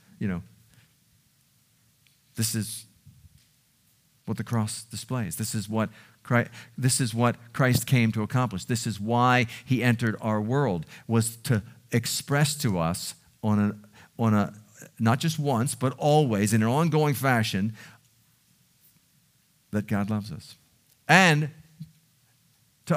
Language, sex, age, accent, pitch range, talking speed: English, male, 50-69, American, 120-160 Hz, 130 wpm